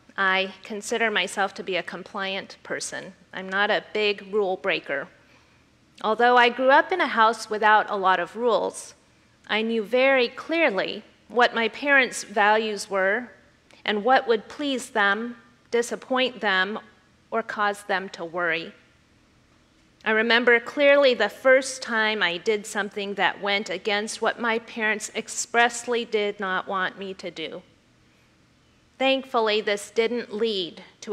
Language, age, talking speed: English, 40-59, 145 wpm